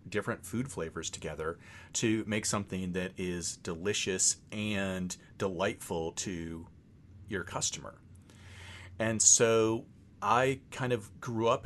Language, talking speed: English, 115 wpm